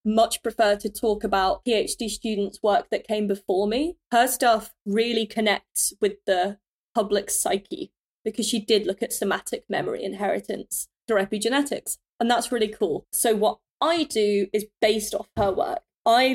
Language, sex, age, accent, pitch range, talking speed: English, female, 20-39, British, 205-235 Hz, 160 wpm